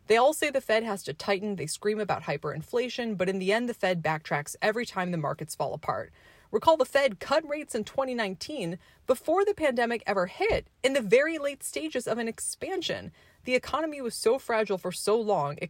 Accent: American